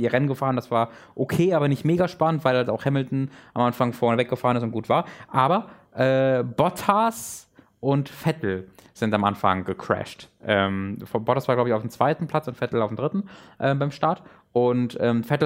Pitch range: 105-140 Hz